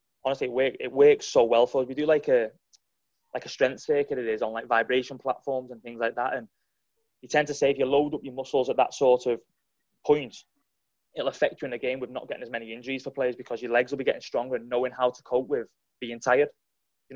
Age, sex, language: 20-39, male, English